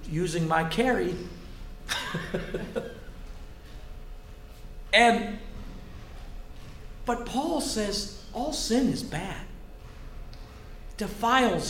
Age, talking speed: 50-69, 60 wpm